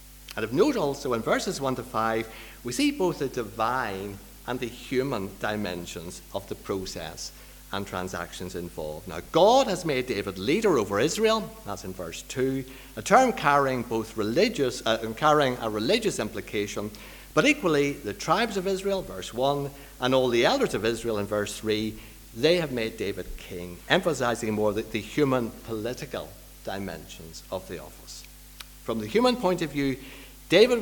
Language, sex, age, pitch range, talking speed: English, male, 50-69, 95-130 Hz, 165 wpm